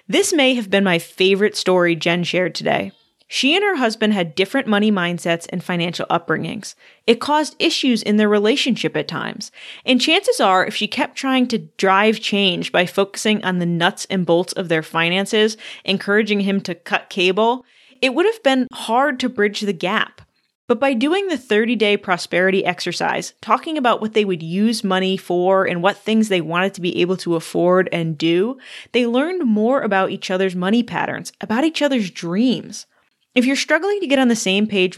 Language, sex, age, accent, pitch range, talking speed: English, female, 20-39, American, 185-250 Hz, 190 wpm